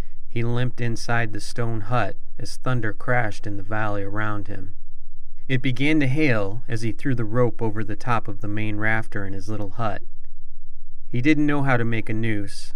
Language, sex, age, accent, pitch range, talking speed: English, male, 30-49, American, 105-120 Hz, 200 wpm